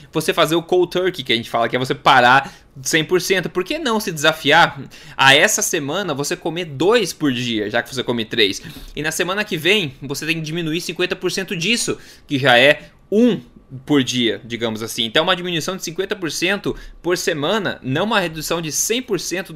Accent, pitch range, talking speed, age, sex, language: Brazilian, 135-185 Hz, 195 wpm, 20-39, male, Portuguese